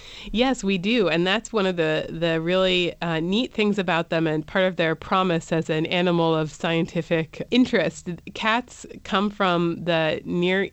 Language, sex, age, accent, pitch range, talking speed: English, female, 30-49, American, 160-185 Hz, 175 wpm